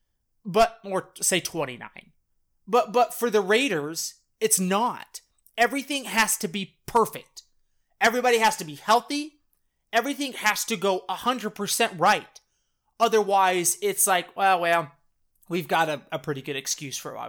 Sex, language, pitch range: male, English, 225-345 Hz